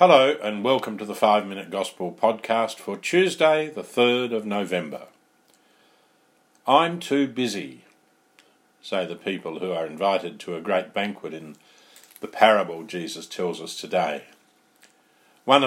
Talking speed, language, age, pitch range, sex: 135 wpm, English, 50-69, 105-135 Hz, male